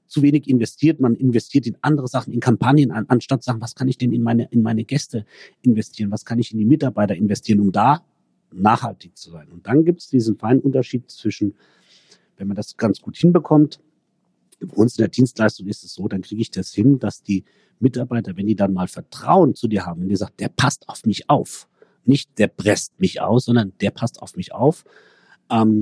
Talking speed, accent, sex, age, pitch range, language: 215 wpm, German, male, 40-59, 110-135 Hz, German